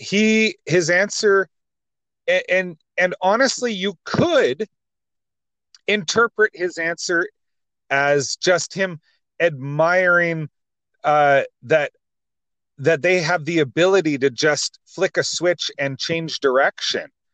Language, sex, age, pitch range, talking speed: English, male, 30-49, 140-185 Hz, 105 wpm